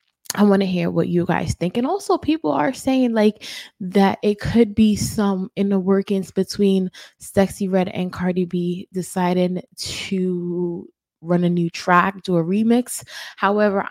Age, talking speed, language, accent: 20-39, 160 wpm, English, American